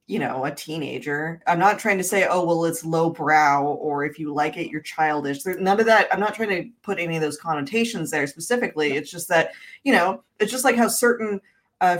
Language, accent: English, American